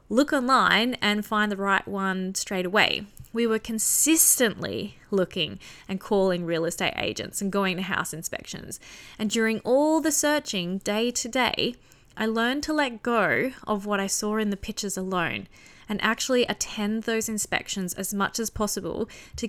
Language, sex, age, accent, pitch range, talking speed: English, female, 20-39, Australian, 185-235 Hz, 165 wpm